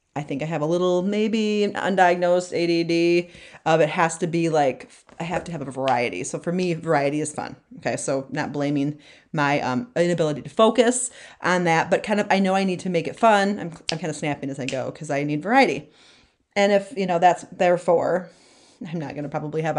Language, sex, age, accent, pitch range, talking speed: English, female, 30-49, American, 160-215 Hz, 225 wpm